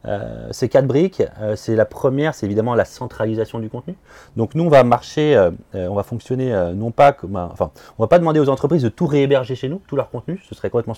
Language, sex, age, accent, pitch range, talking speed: French, male, 30-49, French, 105-135 Hz, 250 wpm